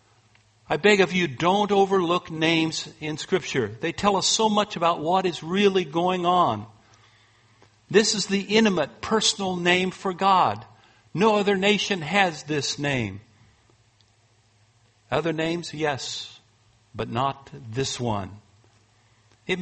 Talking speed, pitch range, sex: 130 wpm, 115-170 Hz, male